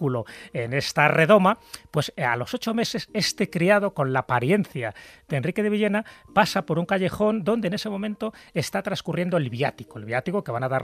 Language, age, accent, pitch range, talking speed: Spanish, 30-49, Spanish, 135-195 Hz, 195 wpm